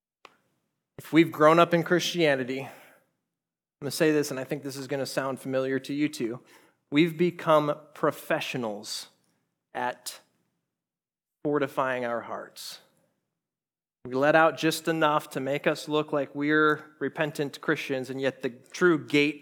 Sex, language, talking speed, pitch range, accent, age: male, English, 150 wpm, 130-150 Hz, American, 30-49